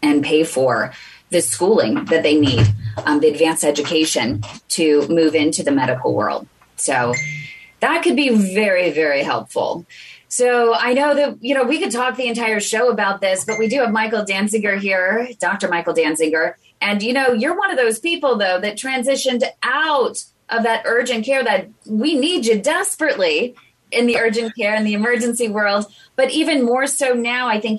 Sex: female